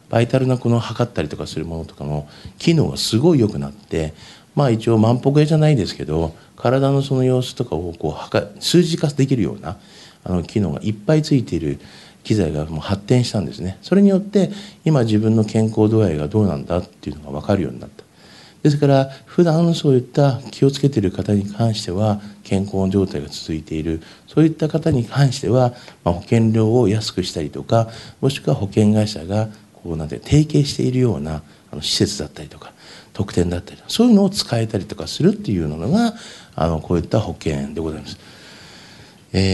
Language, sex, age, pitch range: Japanese, male, 50-69, 95-135 Hz